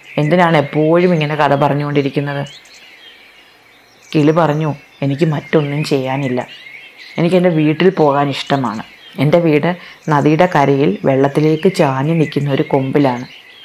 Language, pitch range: Malayalam, 135-160 Hz